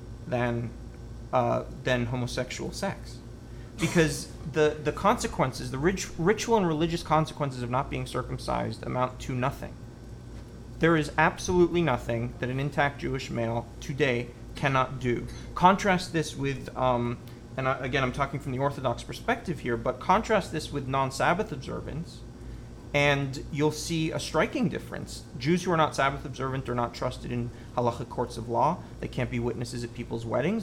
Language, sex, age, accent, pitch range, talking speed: English, male, 30-49, American, 120-155 Hz, 160 wpm